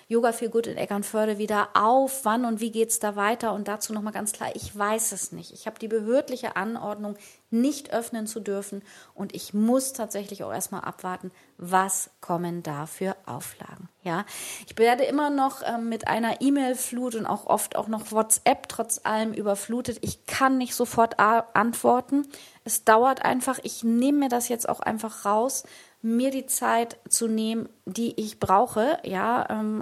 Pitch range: 200-230 Hz